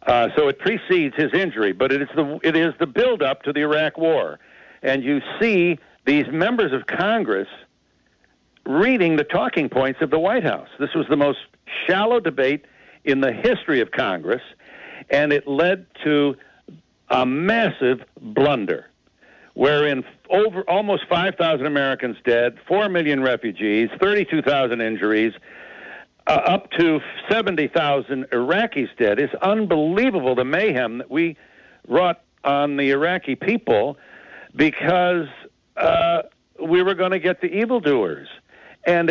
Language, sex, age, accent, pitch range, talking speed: English, male, 60-79, American, 140-185 Hz, 140 wpm